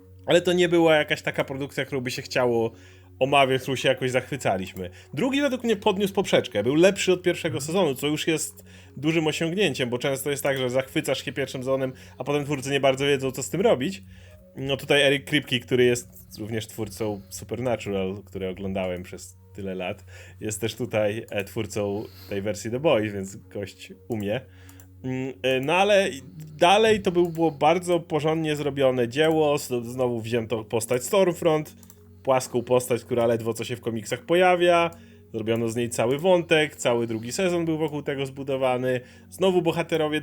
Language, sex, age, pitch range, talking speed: Polish, male, 30-49, 115-160 Hz, 165 wpm